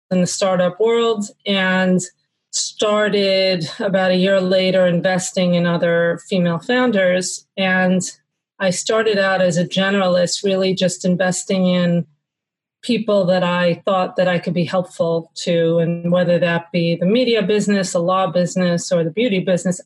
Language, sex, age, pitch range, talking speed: English, female, 30-49, 175-190 Hz, 150 wpm